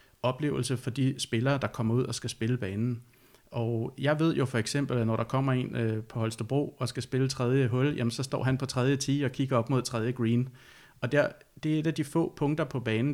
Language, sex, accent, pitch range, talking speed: Danish, male, native, 120-145 Hz, 240 wpm